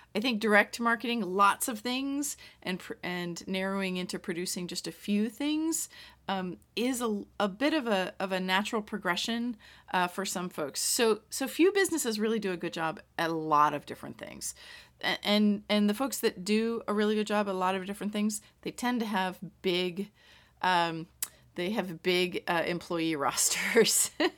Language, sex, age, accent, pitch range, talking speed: English, female, 30-49, American, 175-230 Hz, 180 wpm